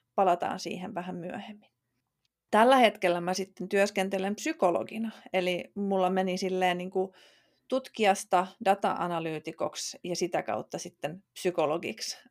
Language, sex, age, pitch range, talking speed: Finnish, female, 30-49, 180-210 Hz, 95 wpm